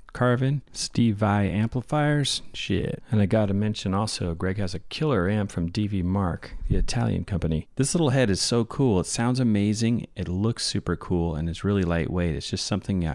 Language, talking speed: English, 185 wpm